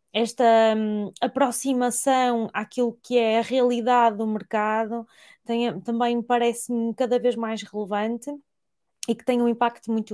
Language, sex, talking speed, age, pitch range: Portuguese, female, 125 wpm, 20-39, 210-245 Hz